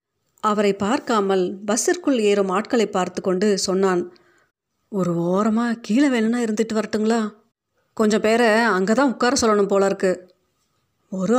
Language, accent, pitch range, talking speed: Tamil, native, 180-225 Hz, 115 wpm